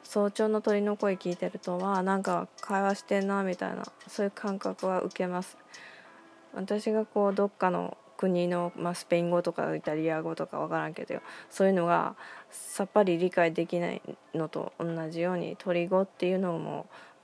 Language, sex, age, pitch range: Japanese, female, 20-39, 170-195 Hz